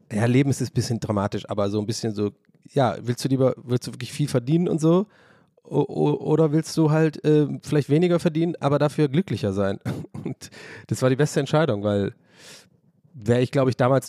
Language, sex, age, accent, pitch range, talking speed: German, male, 30-49, German, 115-160 Hz, 195 wpm